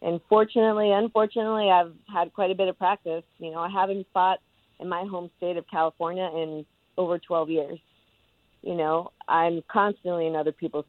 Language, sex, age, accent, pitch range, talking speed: English, female, 30-49, American, 160-190 Hz, 175 wpm